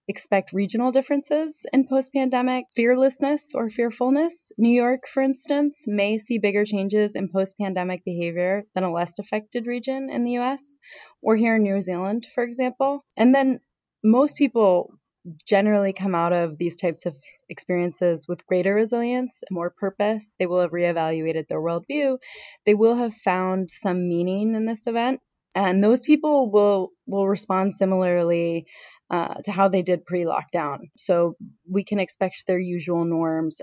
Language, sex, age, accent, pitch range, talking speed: English, female, 20-39, American, 175-245 Hz, 160 wpm